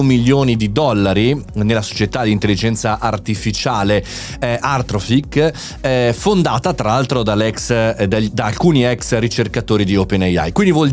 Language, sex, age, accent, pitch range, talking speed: Italian, male, 30-49, native, 110-150 Hz, 125 wpm